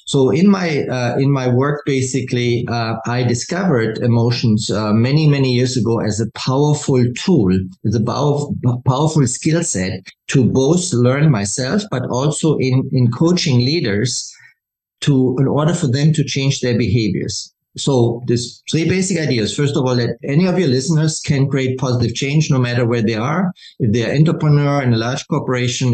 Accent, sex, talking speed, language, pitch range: German, male, 170 wpm, English, 120-150 Hz